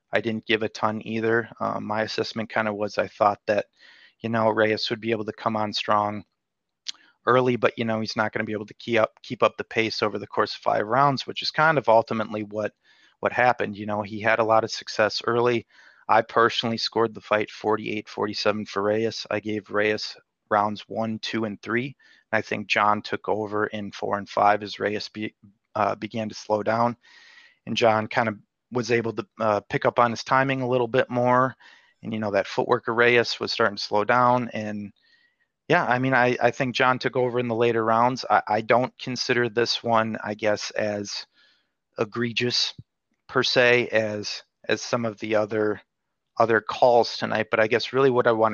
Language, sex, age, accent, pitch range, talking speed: English, male, 30-49, American, 105-120 Hz, 205 wpm